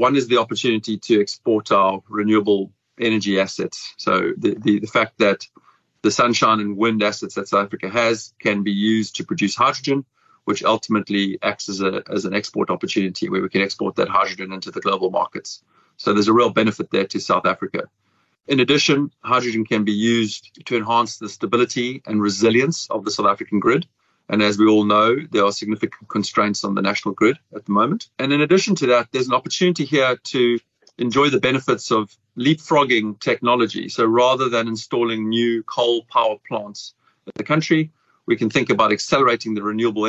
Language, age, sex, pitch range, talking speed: English, 30-49, male, 105-125 Hz, 190 wpm